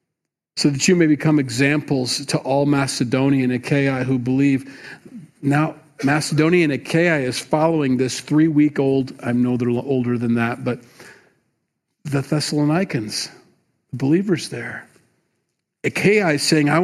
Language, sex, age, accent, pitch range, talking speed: English, male, 40-59, American, 125-155 Hz, 120 wpm